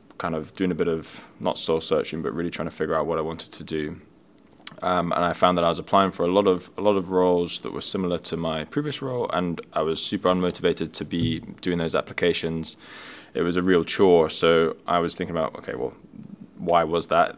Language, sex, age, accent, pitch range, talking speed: English, male, 20-39, British, 80-95 Hz, 235 wpm